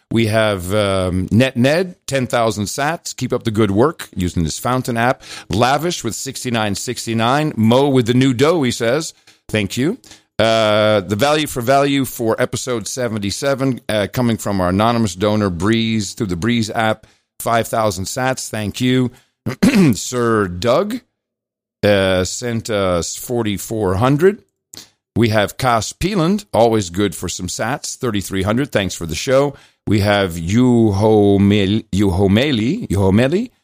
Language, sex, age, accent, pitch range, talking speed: English, male, 50-69, American, 105-130 Hz, 130 wpm